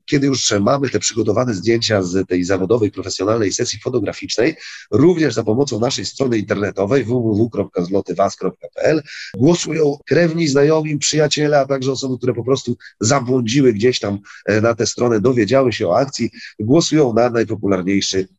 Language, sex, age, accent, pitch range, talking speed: Polish, male, 40-59, native, 100-140 Hz, 135 wpm